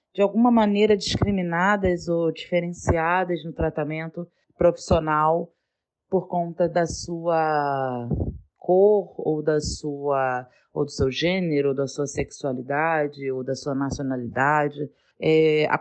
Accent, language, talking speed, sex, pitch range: Brazilian, Portuguese, 120 wpm, female, 155-205 Hz